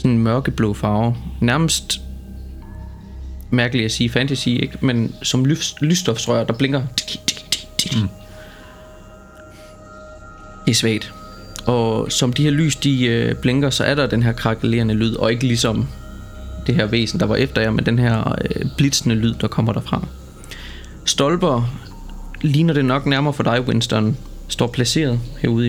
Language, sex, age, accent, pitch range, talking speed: Danish, male, 20-39, native, 105-130 Hz, 135 wpm